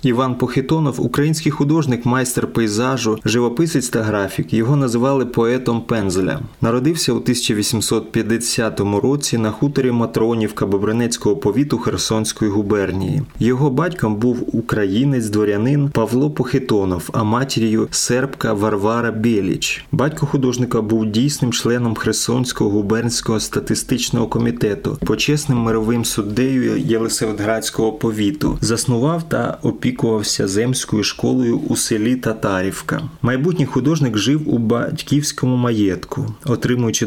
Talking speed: 105 wpm